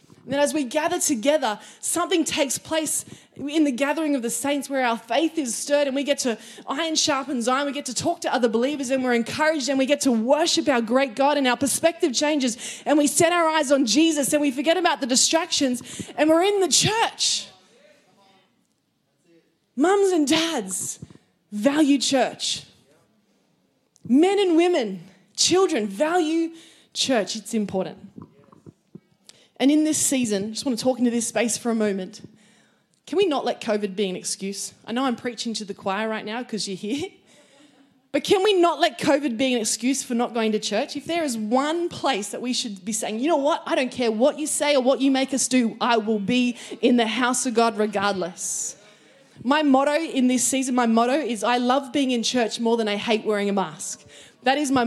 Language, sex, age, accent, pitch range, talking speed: English, female, 20-39, Australian, 225-295 Hz, 200 wpm